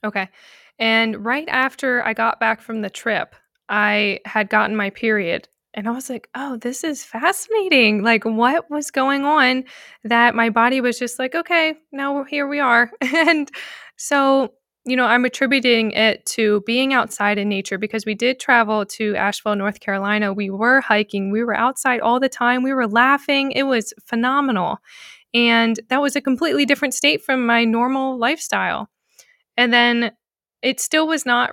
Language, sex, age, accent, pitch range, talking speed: English, female, 20-39, American, 215-275 Hz, 175 wpm